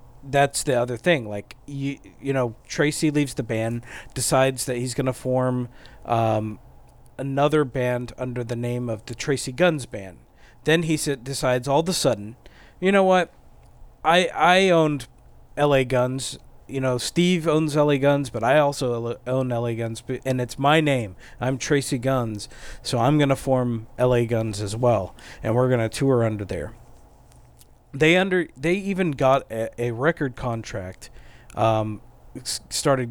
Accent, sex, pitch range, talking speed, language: American, male, 115-145 Hz, 165 wpm, English